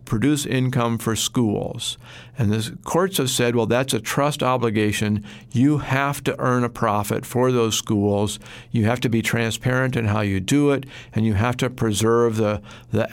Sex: male